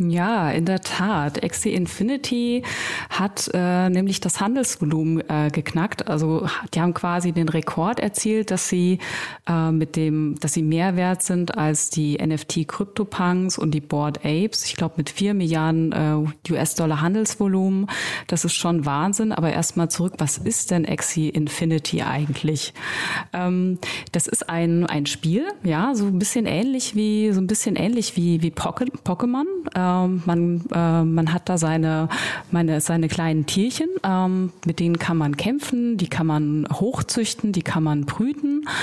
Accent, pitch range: German, 160-205 Hz